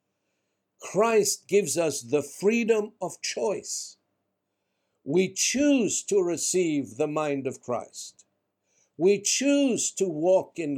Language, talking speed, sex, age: English, 110 wpm, male, 60-79